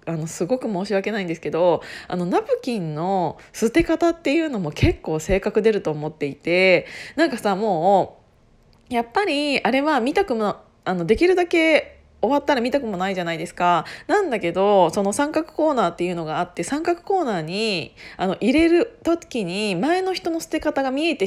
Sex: female